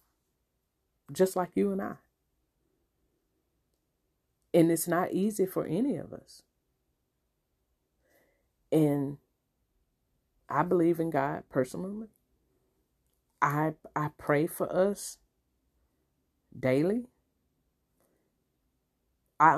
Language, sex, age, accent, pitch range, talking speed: English, female, 40-59, American, 130-185 Hz, 80 wpm